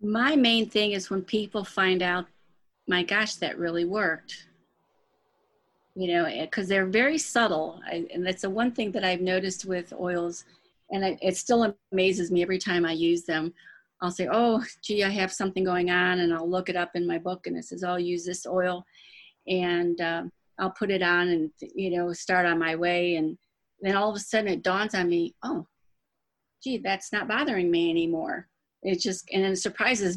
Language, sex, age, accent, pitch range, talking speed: English, female, 40-59, American, 175-210 Hz, 200 wpm